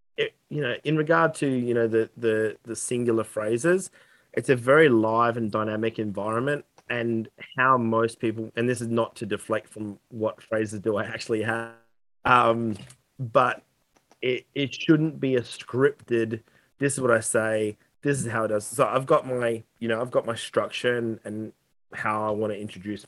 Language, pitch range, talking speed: English, 110-130 Hz, 180 wpm